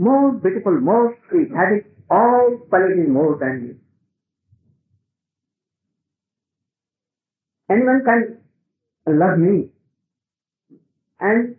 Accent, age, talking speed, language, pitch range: Indian, 50-69, 85 wpm, English, 165-235 Hz